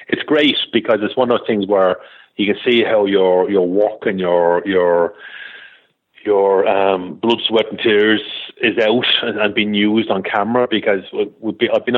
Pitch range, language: 90-110 Hz, English